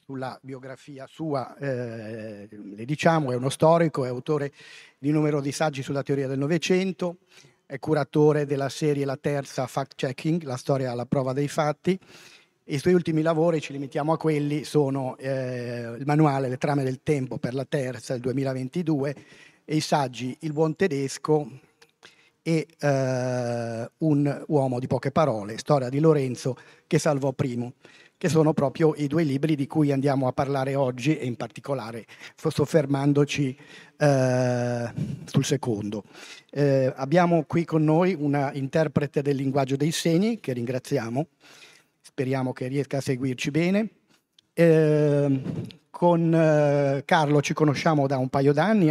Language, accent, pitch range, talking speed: Italian, native, 135-155 Hz, 150 wpm